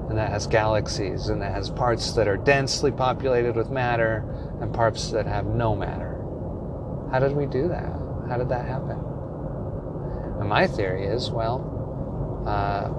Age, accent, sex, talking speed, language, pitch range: 30-49, American, male, 160 wpm, English, 105-135 Hz